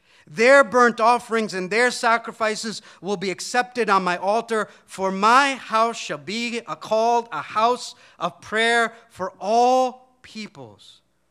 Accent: American